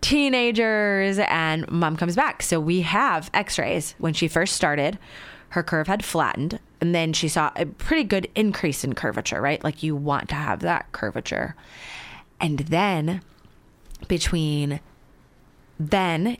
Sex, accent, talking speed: female, American, 145 wpm